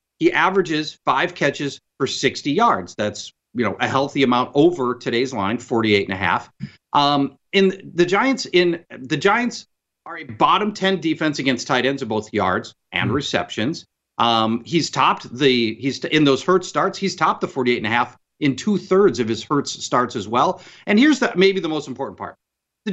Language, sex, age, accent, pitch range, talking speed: English, male, 40-59, American, 140-225 Hz, 190 wpm